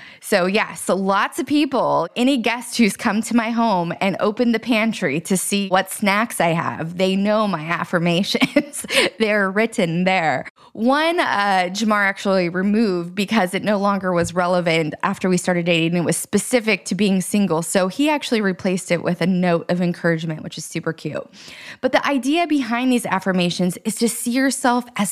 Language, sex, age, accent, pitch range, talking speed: English, female, 20-39, American, 185-250 Hz, 180 wpm